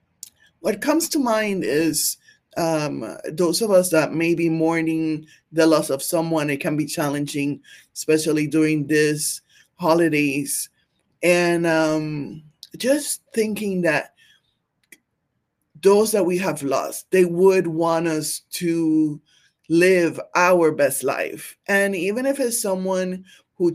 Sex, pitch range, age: male, 155-180 Hz, 20-39